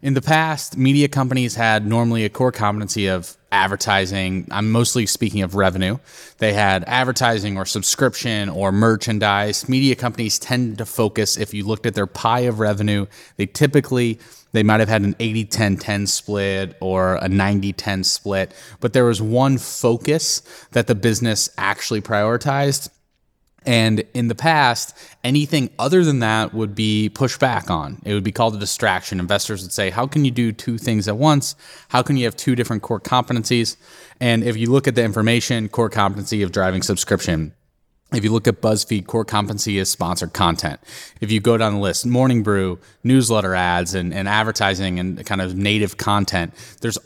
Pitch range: 100-125 Hz